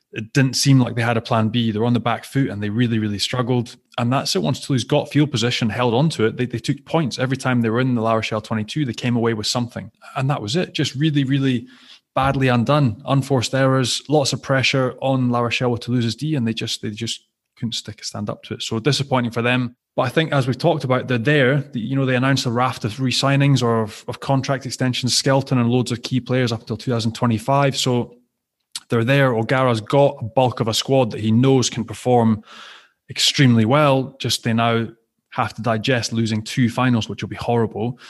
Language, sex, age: English, male, 20-39